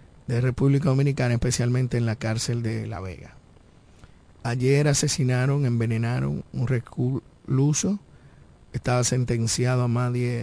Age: 50-69